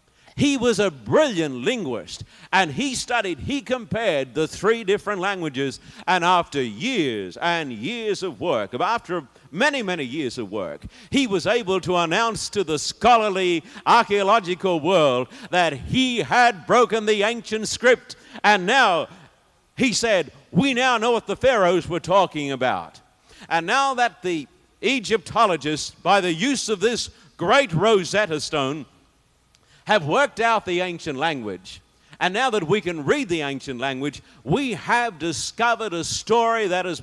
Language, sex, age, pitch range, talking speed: English, male, 50-69, 165-230 Hz, 150 wpm